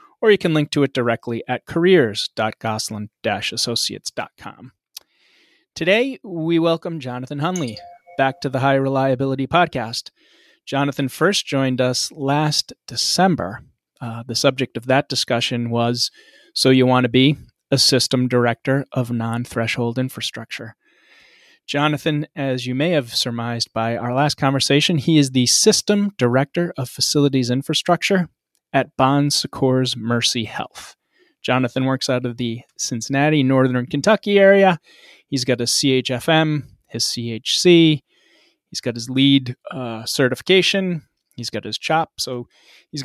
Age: 30-49